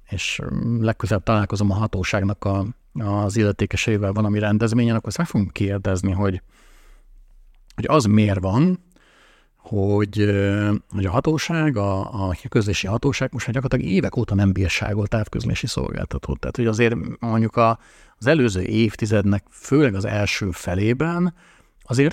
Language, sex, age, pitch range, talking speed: Hungarian, male, 50-69, 100-120 Hz, 130 wpm